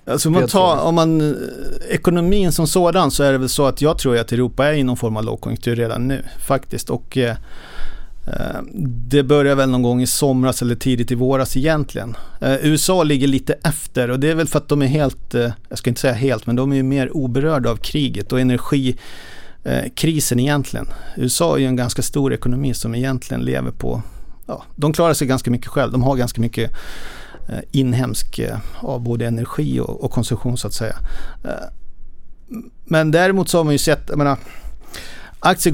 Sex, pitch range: male, 125-155 Hz